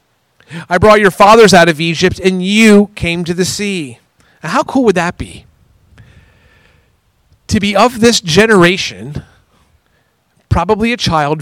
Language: English